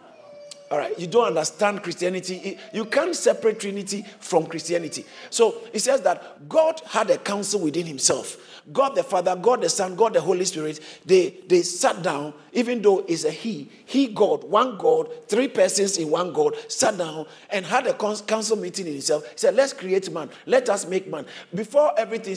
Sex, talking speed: male, 190 wpm